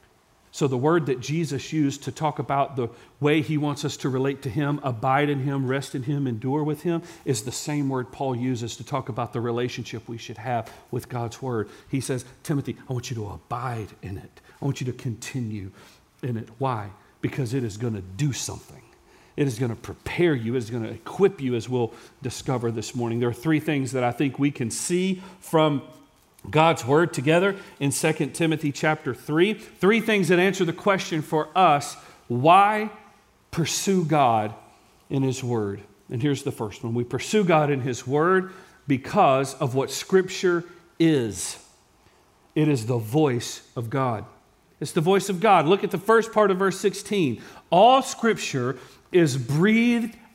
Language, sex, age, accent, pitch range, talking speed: English, male, 40-59, American, 125-165 Hz, 190 wpm